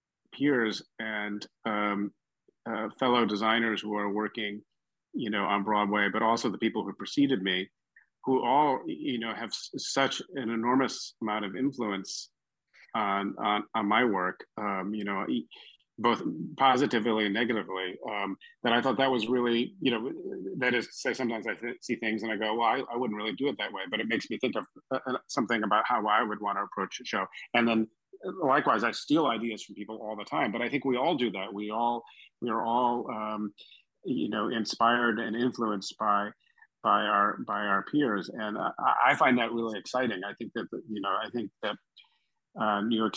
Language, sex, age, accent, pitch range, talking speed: English, male, 40-59, American, 100-120 Hz, 200 wpm